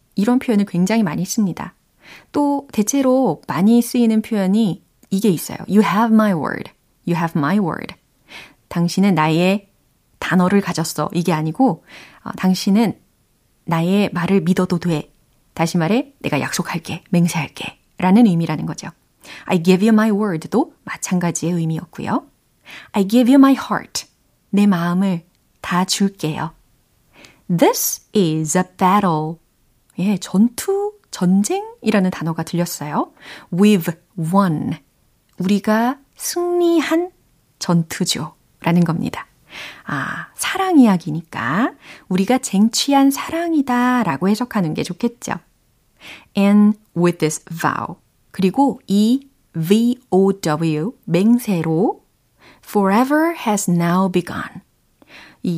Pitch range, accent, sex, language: 170-235 Hz, native, female, Korean